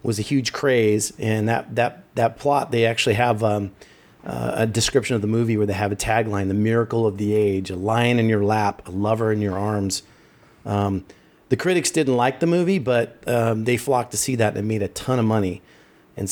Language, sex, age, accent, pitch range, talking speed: English, male, 40-59, American, 105-125 Hz, 225 wpm